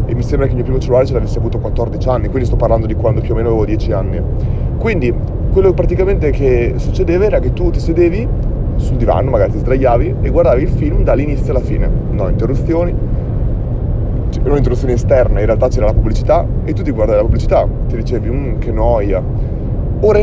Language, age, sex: Italian, 30-49, male